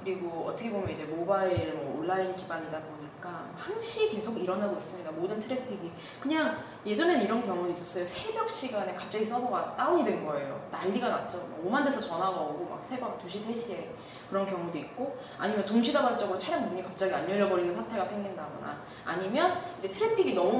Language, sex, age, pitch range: Korean, female, 20-39, 180-260 Hz